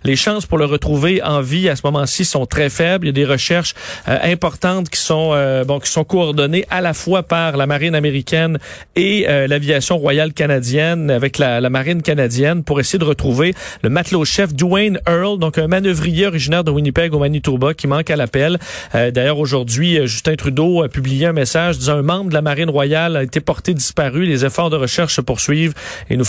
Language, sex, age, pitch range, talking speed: French, male, 40-59, 130-165 Hz, 210 wpm